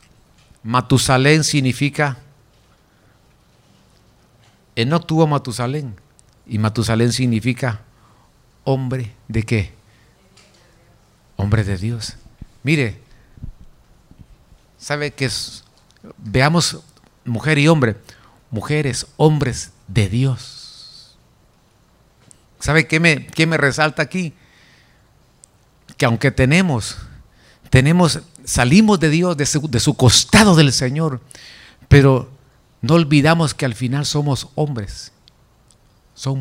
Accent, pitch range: Mexican, 120-155 Hz